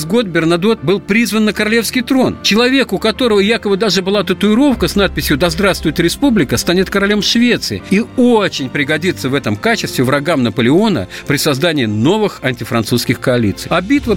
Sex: male